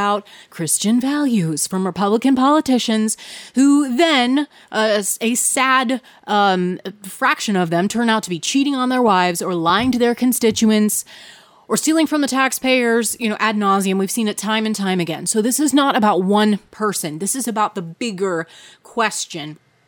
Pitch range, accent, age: 195-265 Hz, American, 30-49